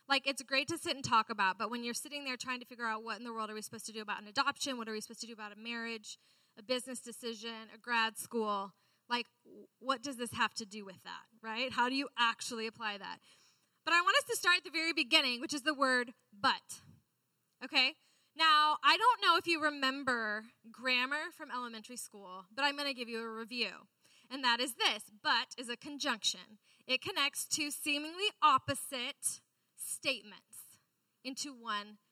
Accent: American